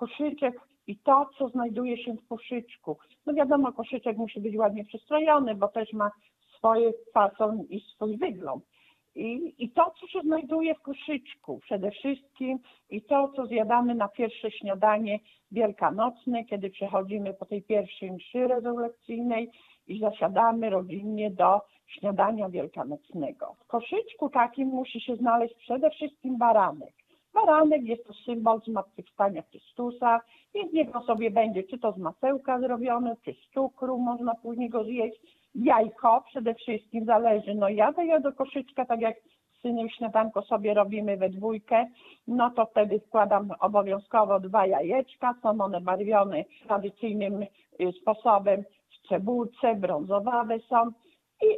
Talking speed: 140 wpm